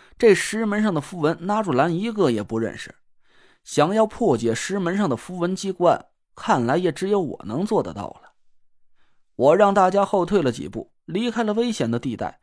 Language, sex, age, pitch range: Chinese, male, 20-39, 175-230 Hz